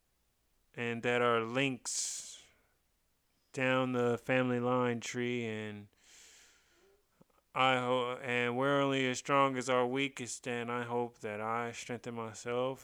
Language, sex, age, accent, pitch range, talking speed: English, male, 20-39, American, 115-140 Hz, 125 wpm